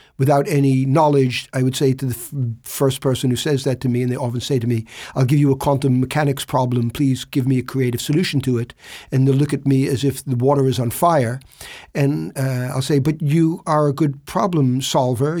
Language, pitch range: Swedish, 130-160 Hz